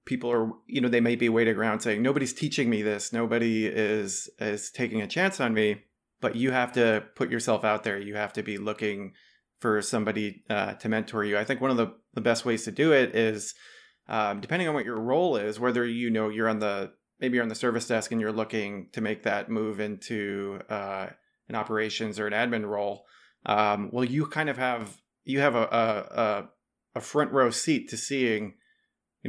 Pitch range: 110-125 Hz